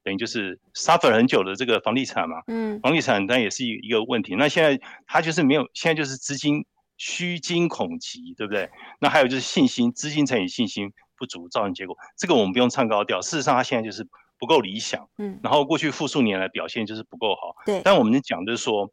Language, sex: Chinese, male